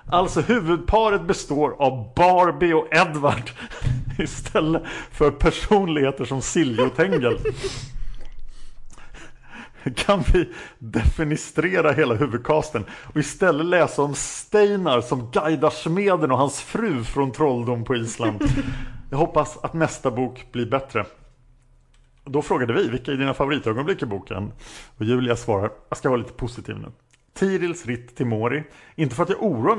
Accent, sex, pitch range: Norwegian, male, 120-155 Hz